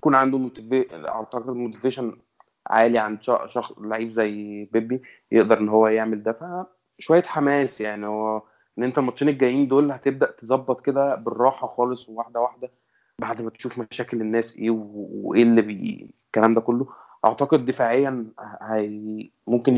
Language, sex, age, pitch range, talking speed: Arabic, male, 20-39, 110-130 Hz, 145 wpm